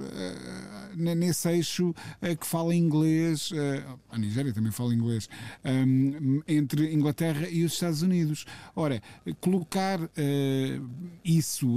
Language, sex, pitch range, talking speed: Portuguese, male, 125-155 Hz, 95 wpm